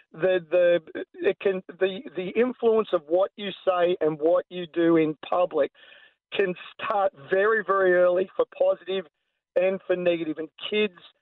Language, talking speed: English, 155 wpm